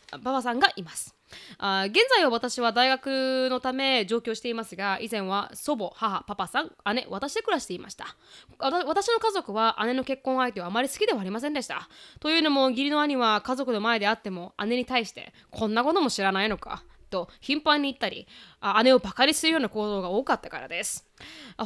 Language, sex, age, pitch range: Japanese, female, 20-39, 210-285 Hz